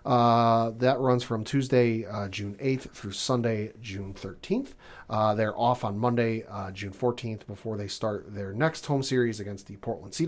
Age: 40-59